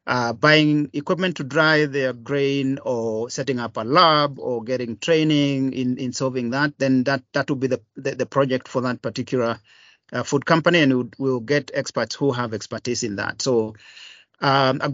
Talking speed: 185 wpm